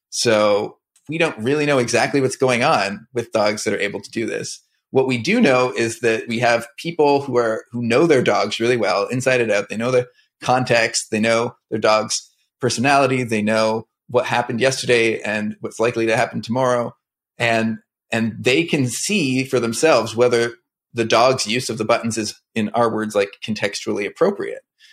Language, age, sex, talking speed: English, 30-49, male, 190 wpm